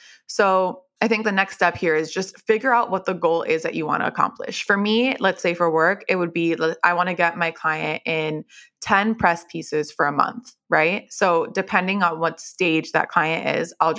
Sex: female